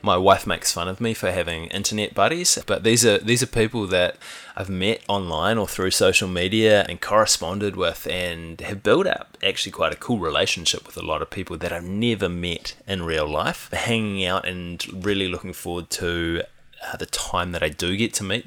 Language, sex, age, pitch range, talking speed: English, male, 20-39, 90-110 Hz, 205 wpm